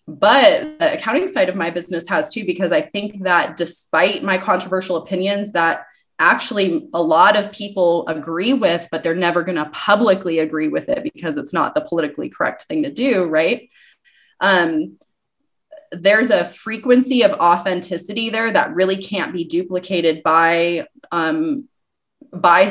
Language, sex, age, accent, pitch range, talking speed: English, female, 20-39, American, 175-240 Hz, 155 wpm